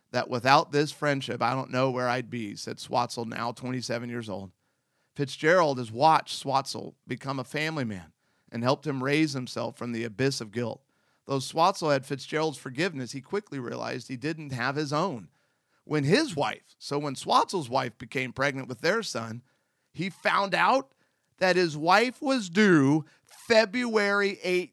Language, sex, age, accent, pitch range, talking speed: English, male, 40-59, American, 120-150 Hz, 165 wpm